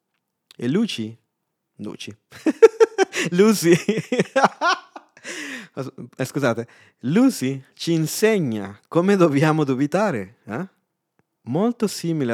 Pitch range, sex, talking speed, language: 105-160 Hz, male, 75 wpm, Italian